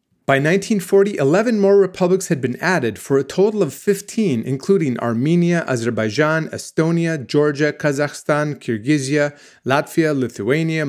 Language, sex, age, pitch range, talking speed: English, male, 30-49, 130-170 Hz, 120 wpm